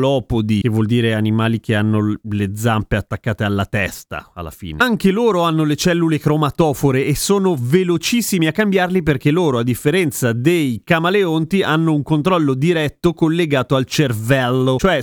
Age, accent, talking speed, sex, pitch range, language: 30-49, native, 150 wpm, male, 135-175 Hz, Italian